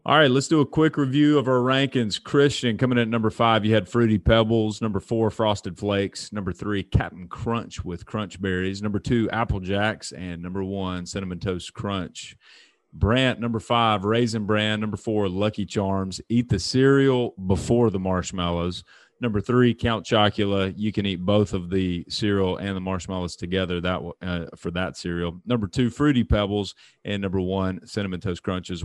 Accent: American